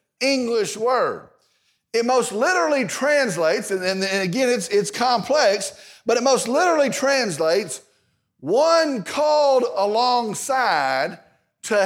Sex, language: male, English